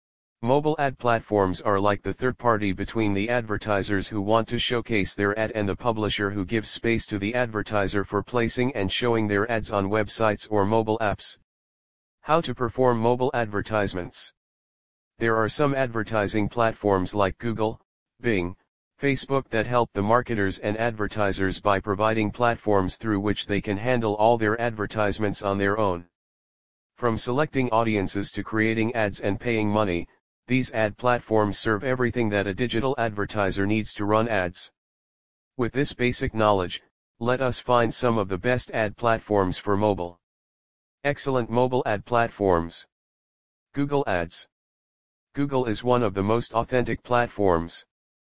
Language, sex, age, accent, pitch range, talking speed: English, male, 40-59, American, 100-120 Hz, 150 wpm